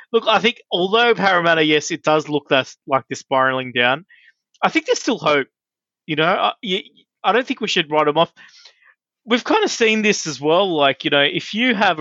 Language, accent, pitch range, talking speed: English, Australian, 130-170 Hz, 215 wpm